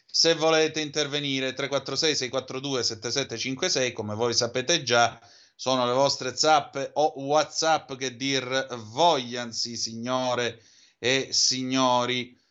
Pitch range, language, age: 120-145 Hz, Italian, 30-49